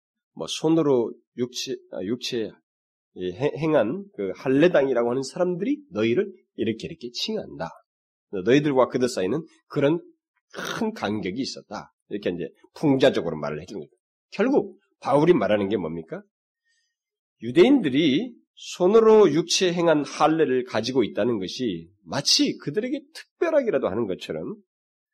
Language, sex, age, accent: Korean, male, 30-49, native